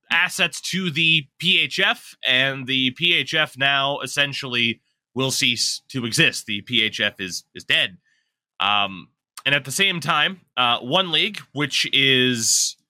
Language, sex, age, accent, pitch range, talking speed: English, male, 20-39, American, 115-160 Hz, 135 wpm